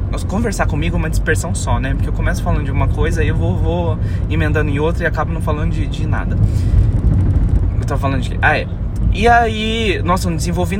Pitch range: 95-115 Hz